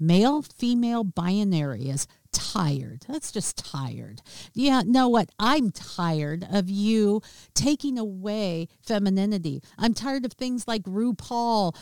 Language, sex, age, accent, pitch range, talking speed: English, female, 50-69, American, 180-255 Hz, 110 wpm